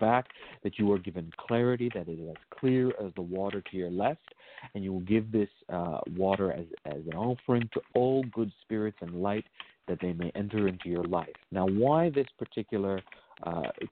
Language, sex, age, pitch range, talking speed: English, male, 40-59, 90-110 Hz, 200 wpm